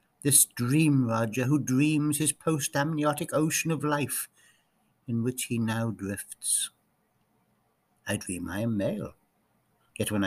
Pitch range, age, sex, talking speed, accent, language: 120-150 Hz, 60-79, male, 125 wpm, British, English